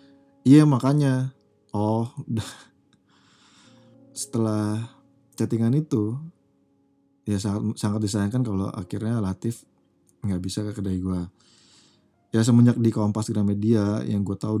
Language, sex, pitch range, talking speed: Indonesian, male, 100-125 Hz, 115 wpm